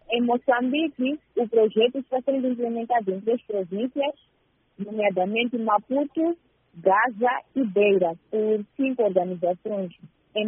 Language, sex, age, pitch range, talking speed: Portuguese, female, 20-39, 190-235 Hz, 110 wpm